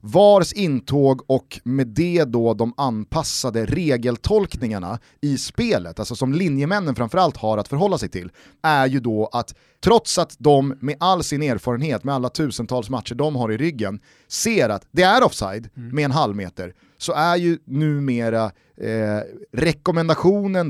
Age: 30-49